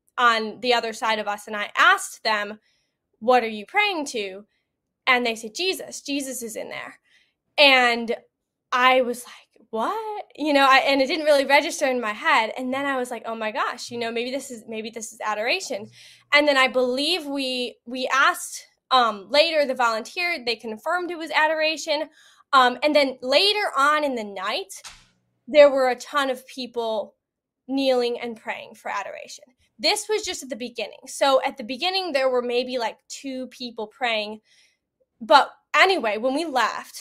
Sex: female